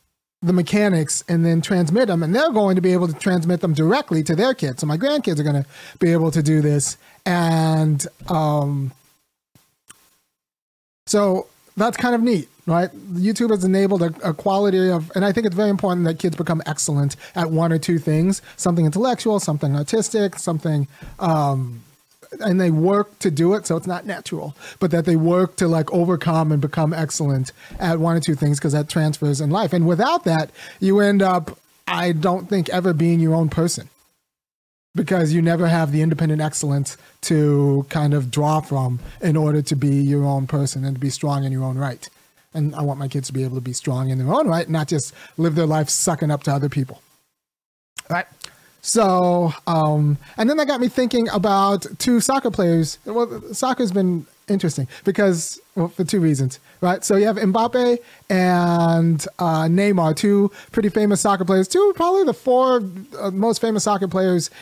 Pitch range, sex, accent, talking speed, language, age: 150-195 Hz, male, American, 190 wpm, English, 30-49